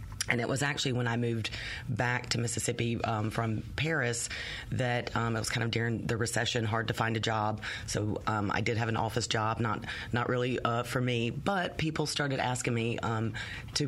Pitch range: 110-130 Hz